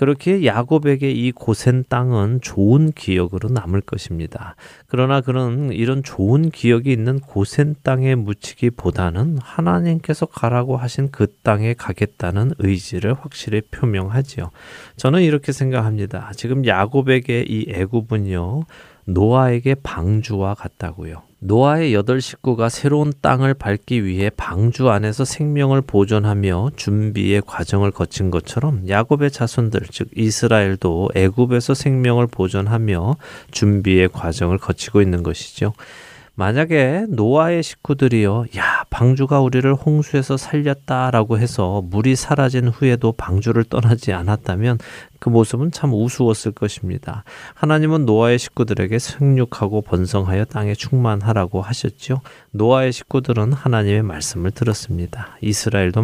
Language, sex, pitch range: Korean, male, 100-135 Hz